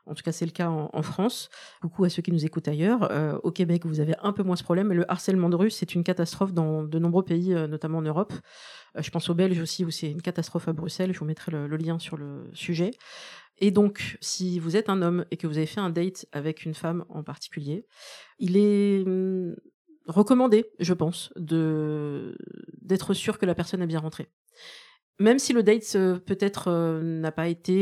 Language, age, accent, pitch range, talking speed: French, 40-59, French, 165-195 Hz, 225 wpm